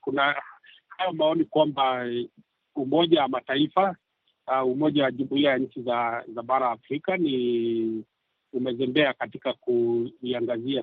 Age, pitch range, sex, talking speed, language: 50-69, 120-155 Hz, male, 110 wpm, Swahili